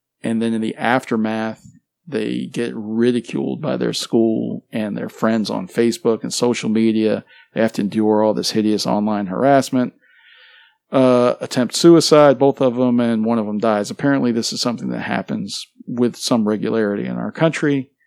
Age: 40-59